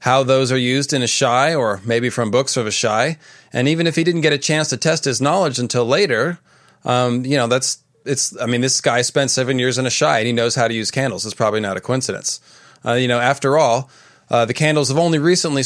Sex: male